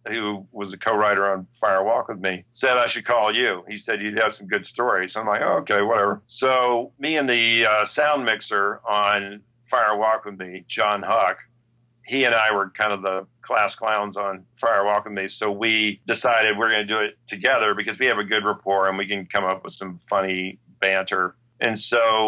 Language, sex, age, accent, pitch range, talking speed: English, male, 40-59, American, 100-120 Hz, 215 wpm